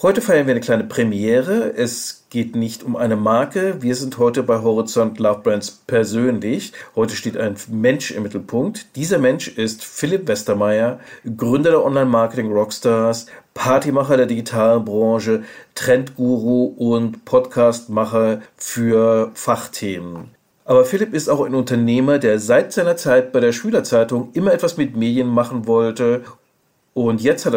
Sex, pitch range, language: male, 115-140 Hz, German